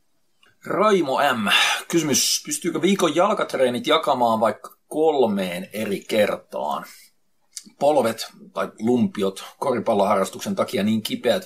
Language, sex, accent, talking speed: Finnish, male, native, 95 wpm